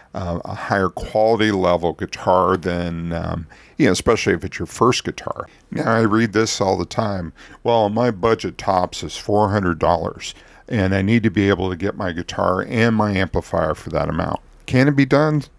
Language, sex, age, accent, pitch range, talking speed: English, male, 50-69, American, 95-120 Hz, 190 wpm